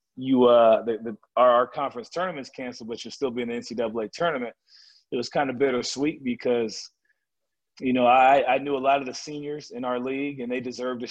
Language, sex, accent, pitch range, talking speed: English, male, American, 120-145 Hz, 205 wpm